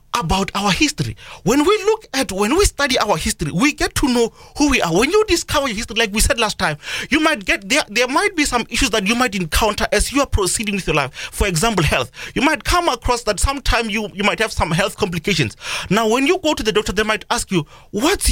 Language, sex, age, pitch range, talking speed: English, male, 30-49, 195-265 Hz, 250 wpm